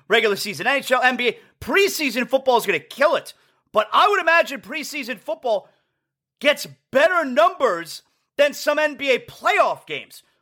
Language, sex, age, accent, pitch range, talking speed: English, male, 30-49, American, 220-295 Hz, 145 wpm